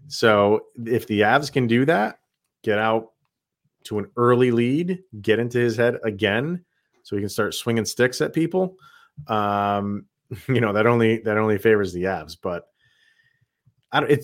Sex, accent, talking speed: male, American, 165 wpm